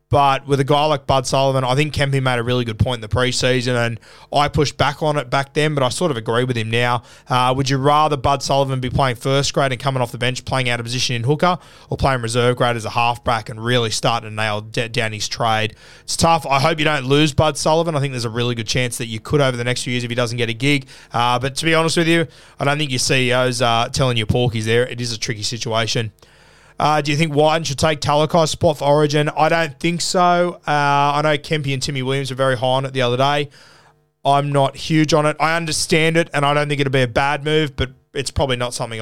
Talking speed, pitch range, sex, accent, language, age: 270 wpm, 120-150 Hz, male, Australian, English, 20-39